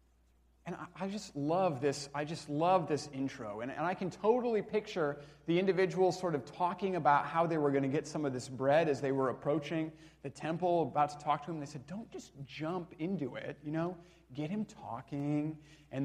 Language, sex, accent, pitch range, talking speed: English, male, American, 120-170 Hz, 210 wpm